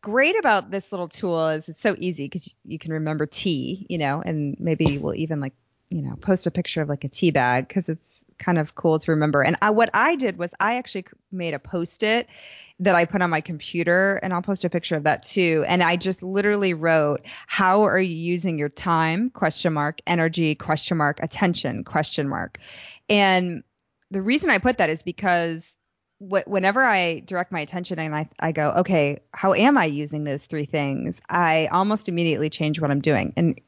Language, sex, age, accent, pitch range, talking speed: English, female, 20-39, American, 155-190 Hz, 205 wpm